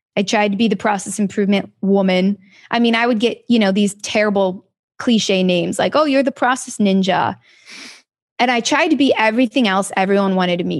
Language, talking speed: English, 195 wpm